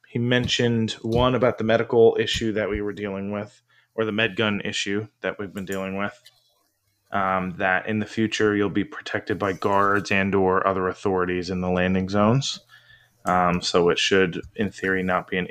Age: 20-39